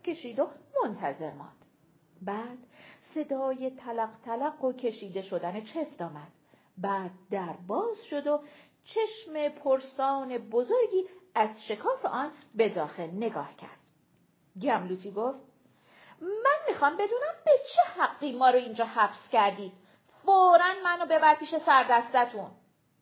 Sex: female